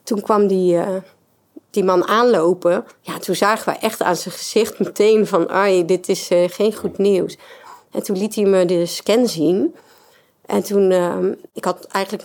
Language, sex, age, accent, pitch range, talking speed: Dutch, female, 40-59, Dutch, 190-245 Hz, 185 wpm